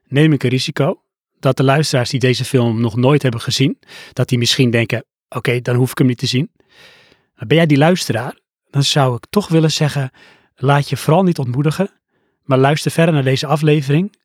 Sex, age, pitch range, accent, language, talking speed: male, 30-49, 130-165 Hz, Dutch, Dutch, 205 wpm